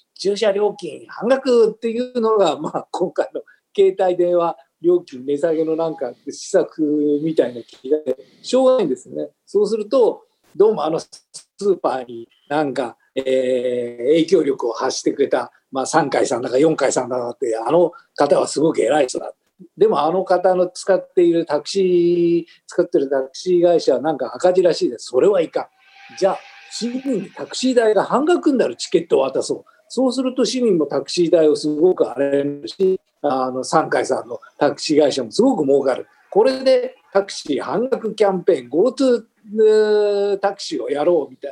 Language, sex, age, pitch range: Japanese, male, 50-69, 160-270 Hz